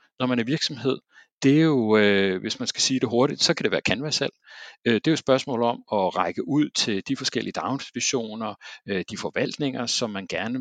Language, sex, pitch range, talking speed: Danish, male, 110-155 Hz, 225 wpm